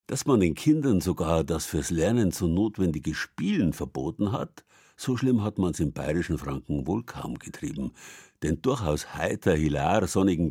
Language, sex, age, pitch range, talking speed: German, male, 60-79, 75-100 Hz, 165 wpm